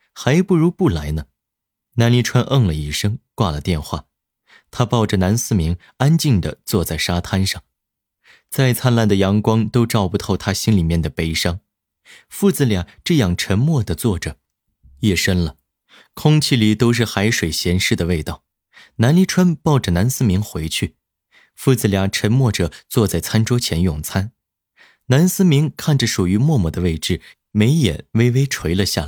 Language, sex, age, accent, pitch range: Chinese, male, 30-49, native, 85-120 Hz